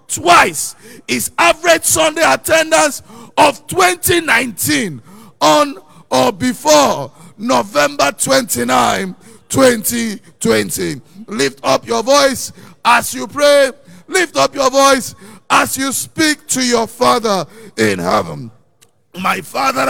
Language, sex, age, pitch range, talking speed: English, male, 50-69, 230-295 Hz, 105 wpm